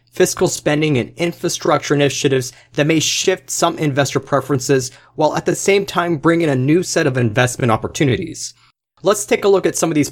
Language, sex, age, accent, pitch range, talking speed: English, male, 30-49, American, 120-155 Hz, 190 wpm